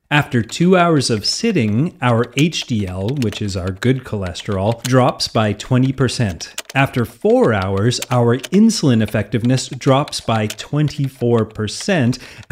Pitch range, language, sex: 110-150 Hz, English, male